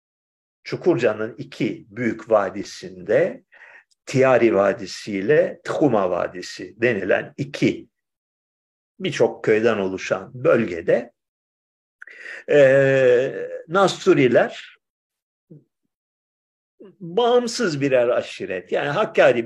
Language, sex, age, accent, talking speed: Turkish, male, 50-69, native, 70 wpm